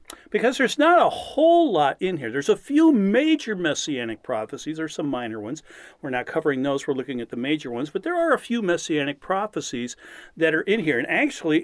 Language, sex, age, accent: English, male, 40-59, American